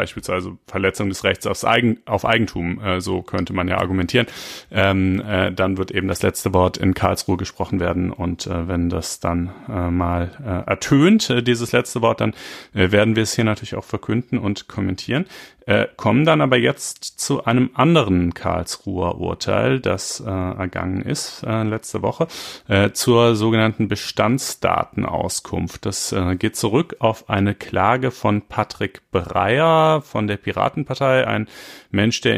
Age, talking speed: 30-49, 160 wpm